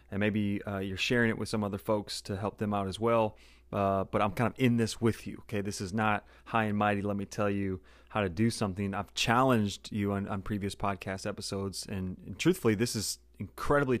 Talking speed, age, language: 230 wpm, 30-49, English